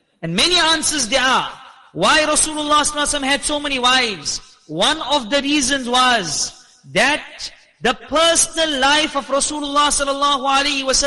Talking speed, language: 130 wpm, English